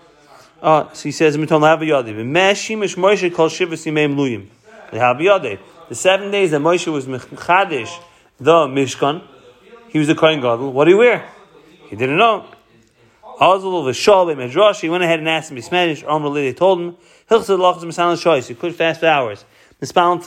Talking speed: 75 wpm